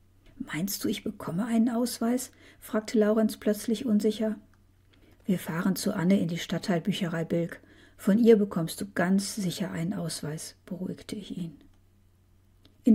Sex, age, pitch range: female, 50-69, 155-210 Hz